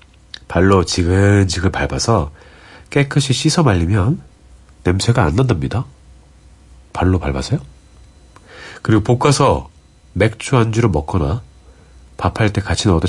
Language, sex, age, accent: Korean, male, 40-59, native